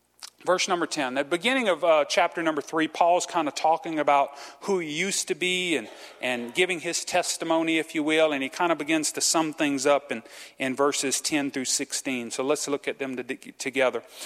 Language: English